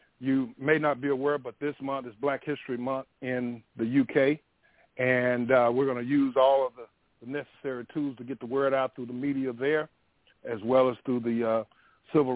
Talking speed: 210 wpm